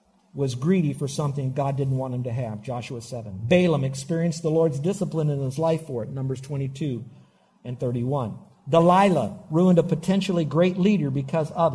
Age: 50-69